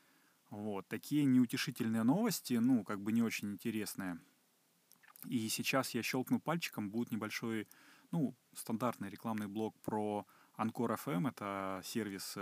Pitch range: 100-120 Hz